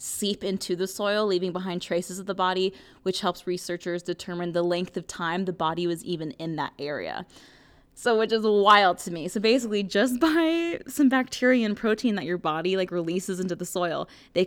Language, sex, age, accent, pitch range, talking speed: English, female, 20-39, American, 170-210 Hz, 200 wpm